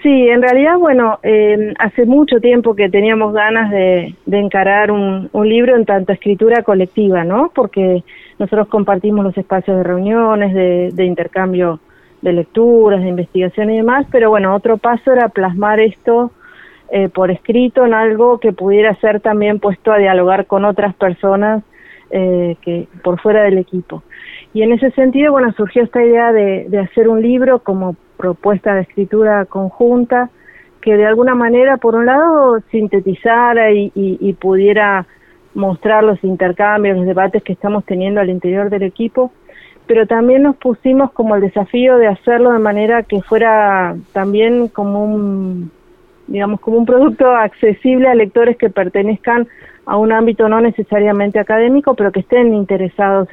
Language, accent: Spanish, Argentinian